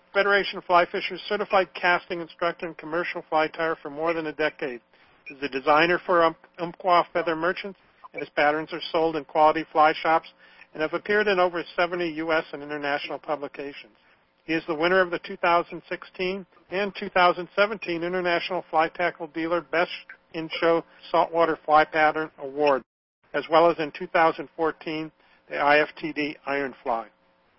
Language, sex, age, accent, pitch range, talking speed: English, male, 50-69, American, 160-185 Hz, 150 wpm